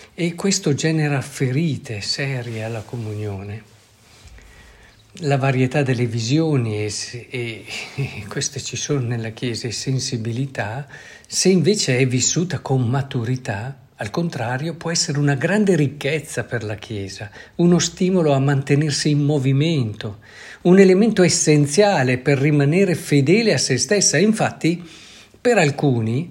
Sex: male